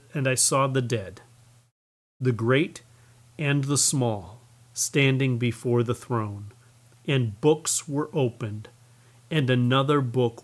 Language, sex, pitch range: English, male, 115-135 Hz